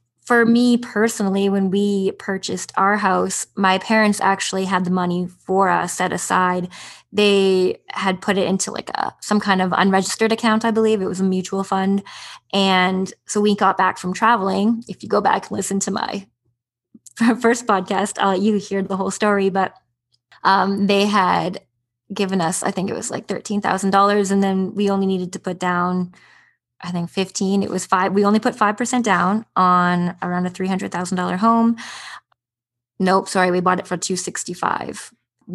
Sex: female